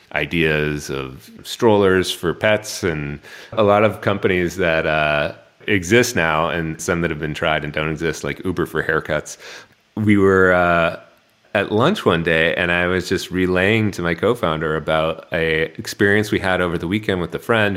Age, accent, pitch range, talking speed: 30-49, American, 80-100 Hz, 180 wpm